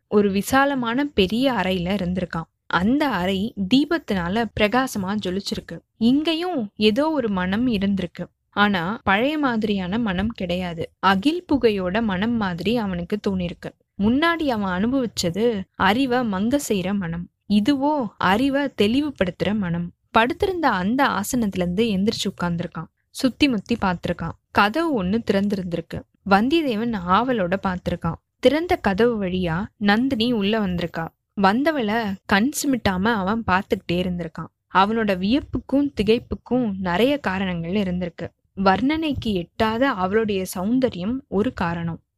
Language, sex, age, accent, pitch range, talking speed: Tamil, female, 20-39, native, 185-255 Hz, 105 wpm